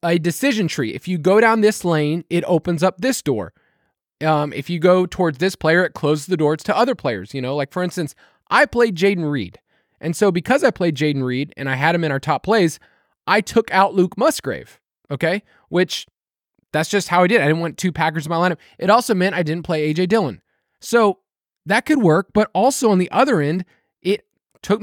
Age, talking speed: 20-39, 220 wpm